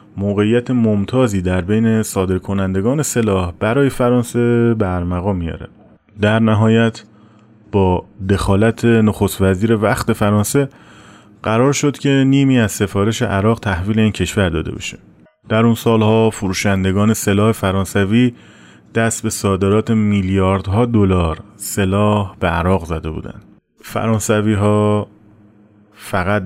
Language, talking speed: Persian, 105 wpm